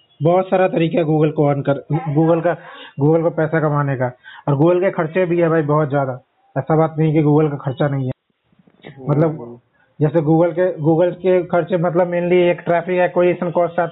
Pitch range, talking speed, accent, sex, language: 155-175 Hz, 195 wpm, native, male, Hindi